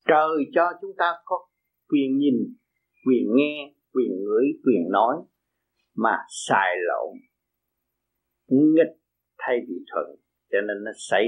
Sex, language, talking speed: male, Vietnamese, 130 wpm